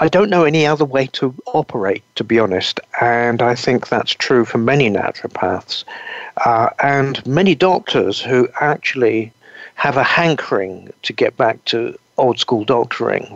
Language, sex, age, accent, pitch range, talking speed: English, male, 50-69, British, 115-140 Hz, 155 wpm